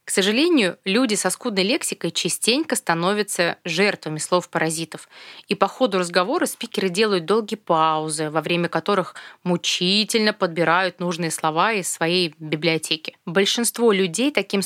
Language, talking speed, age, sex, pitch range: Russian, 125 wpm, 20-39, female, 170-220 Hz